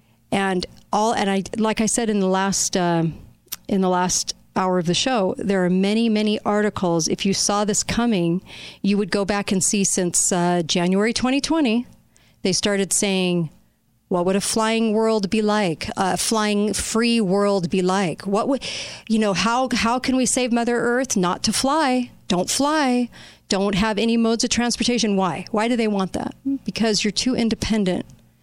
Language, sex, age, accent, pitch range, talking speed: English, female, 40-59, American, 180-220 Hz, 185 wpm